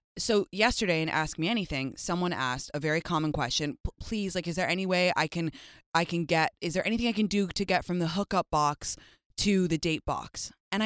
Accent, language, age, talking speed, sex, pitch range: American, English, 20-39, 220 wpm, female, 165-230 Hz